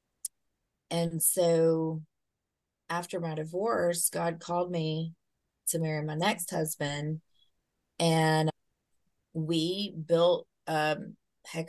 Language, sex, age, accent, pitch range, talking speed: English, female, 30-49, American, 150-180 Hz, 90 wpm